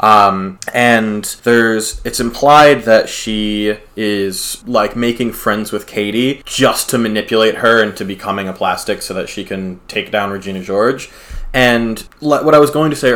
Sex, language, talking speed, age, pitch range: male, English, 165 wpm, 20-39, 105-130 Hz